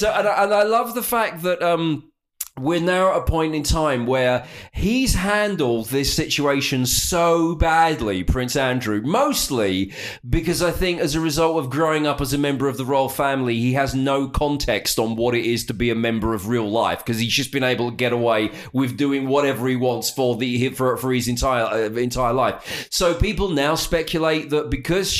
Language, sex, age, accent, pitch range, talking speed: English, male, 30-49, British, 115-155 Hz, 205 wpm